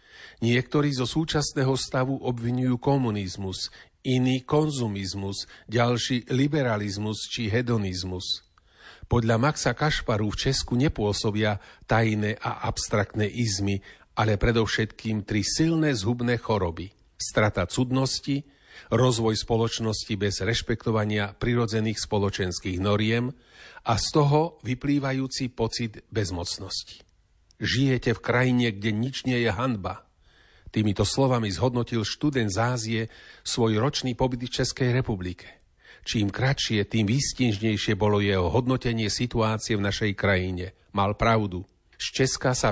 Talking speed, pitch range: 110 wpm, 105-130 Hz